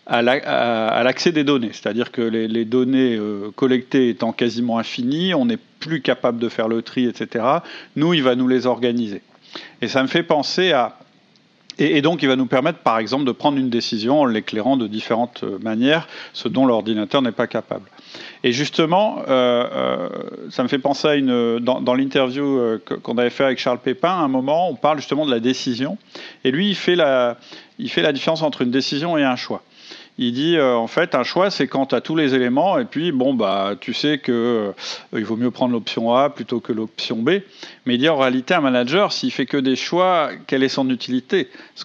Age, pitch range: 40-59, 120-155 Hz